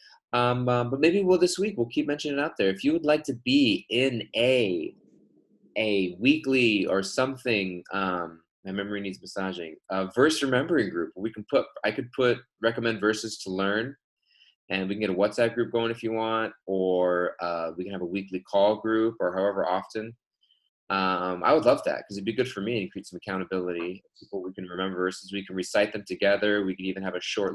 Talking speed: 215 wpm